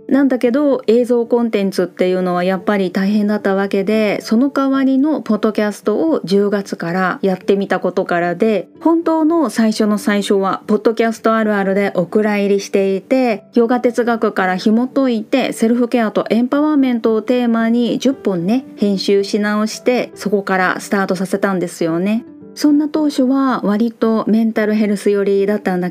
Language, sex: Japanese, female